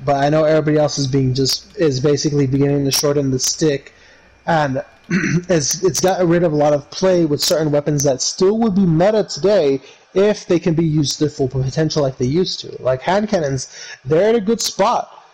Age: 20-39